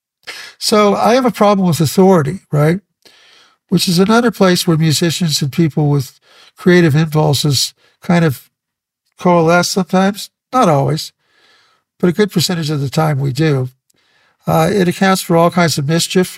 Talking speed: 155 wpm